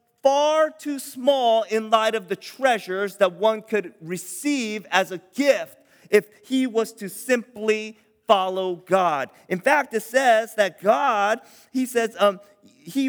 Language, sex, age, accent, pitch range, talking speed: English, male, 40-59, American, 170-230 Hz, 145 wpm